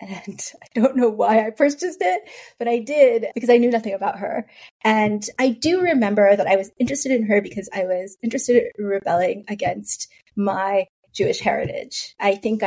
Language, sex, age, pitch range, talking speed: English, female, 30-49, 205-260 Hz, 185 wpm